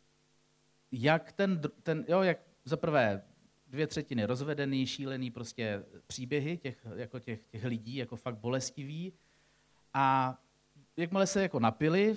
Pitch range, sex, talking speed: 125-170 Hz, male, 130 wpm